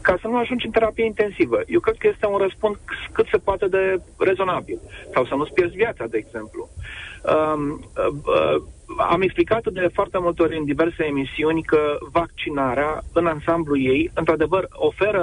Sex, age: male, 40-59